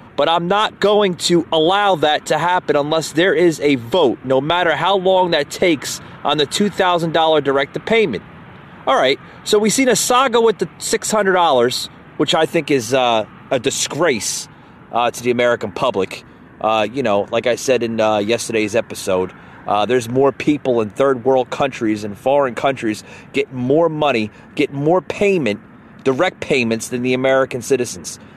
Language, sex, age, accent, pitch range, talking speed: English, male, 30-49, American, 120-170 Hz, 165 wpm